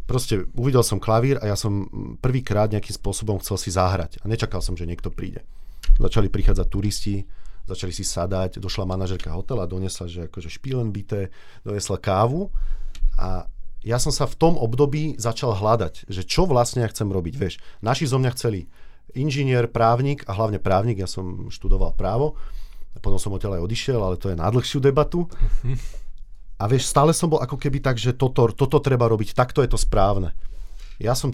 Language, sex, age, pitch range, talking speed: Slovak, male, 40-59, 95-125 Hz, 175 wpm